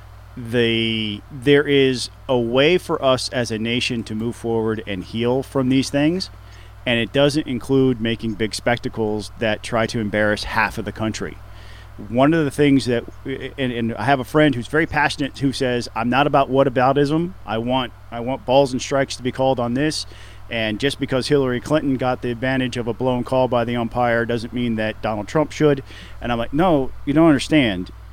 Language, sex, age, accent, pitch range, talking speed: English, male, 40-59, American, 105-140 Hz, 200 wpm